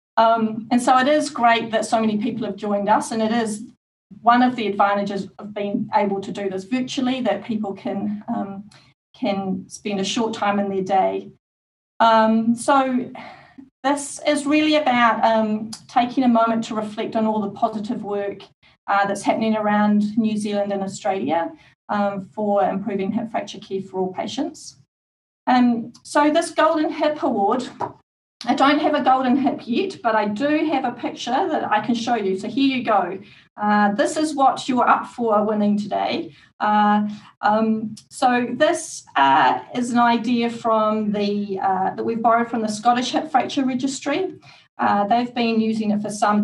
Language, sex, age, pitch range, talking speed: English, female, 40-59, 205-250 Hz, 175 wpm